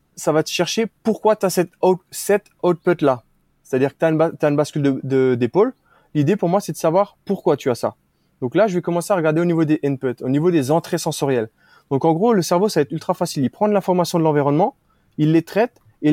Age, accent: 20-39, French